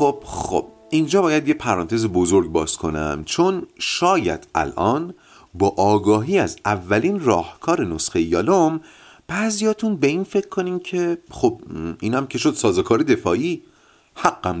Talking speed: 130 wpm